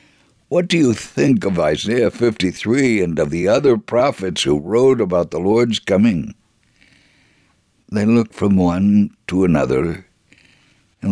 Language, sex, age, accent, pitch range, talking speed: English, male, 60-79, American, 100-125 Hz, 135 wpm